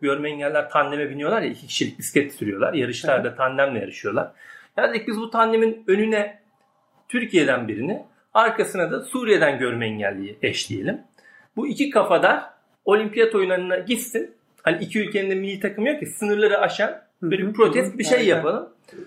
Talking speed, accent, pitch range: 150 wpm, native, 155-225 Hz